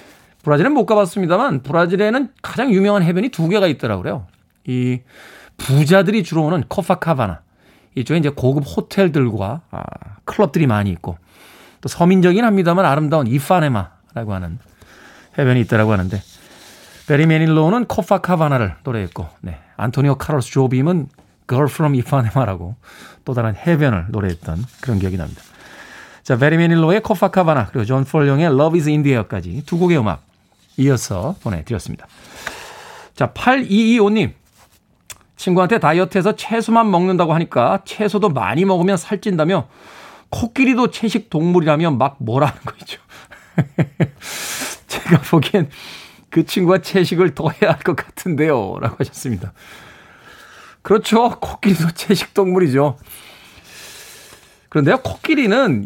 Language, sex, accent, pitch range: Korean, male, native, 125-195 Hz